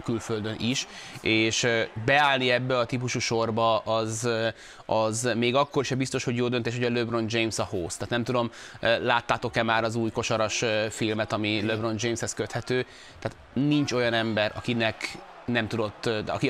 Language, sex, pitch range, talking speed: Hungarian, male, 115-135 Hz, 160 wpm